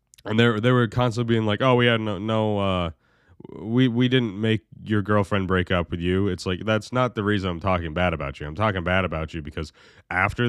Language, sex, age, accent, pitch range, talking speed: English, male, 20-39, American, 85-105 Hz, 235 wpm